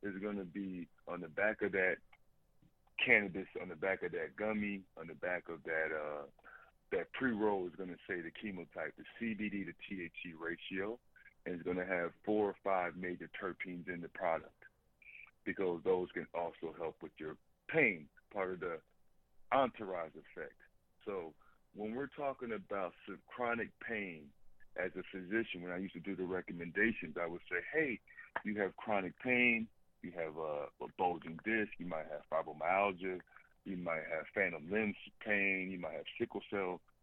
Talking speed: 175 wpm